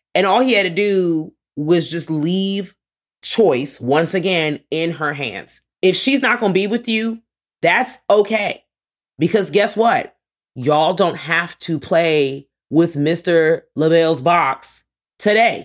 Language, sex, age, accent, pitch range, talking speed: English, female, 30-49, American, 145-195 Hz, 145 wpm